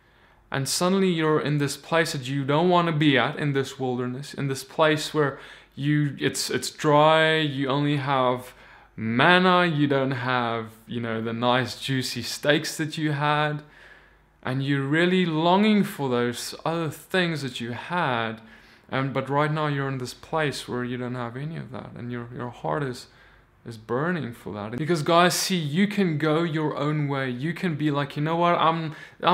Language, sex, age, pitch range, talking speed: English, male, 20-39, 130-155 Hz, 190 wpm